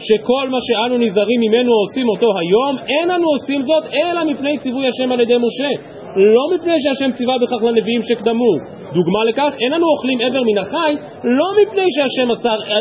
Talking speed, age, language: 180 wpm, 30-49, Hebrew